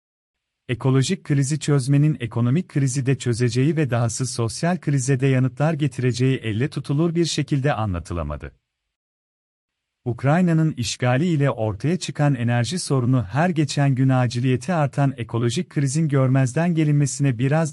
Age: 40-59